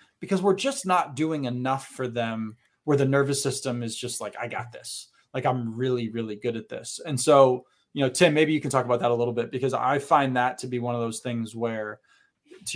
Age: 20-39